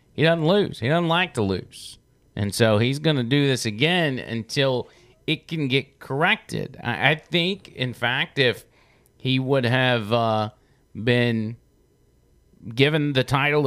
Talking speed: 150 wpm